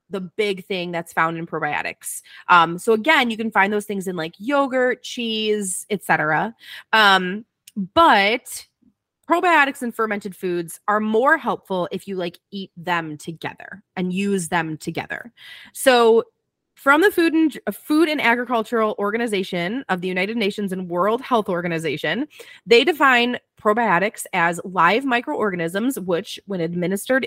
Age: 20-39